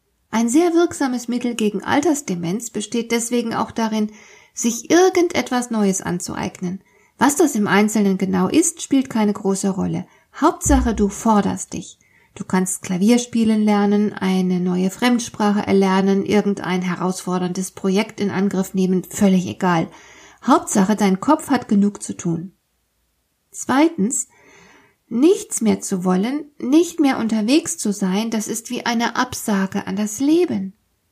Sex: female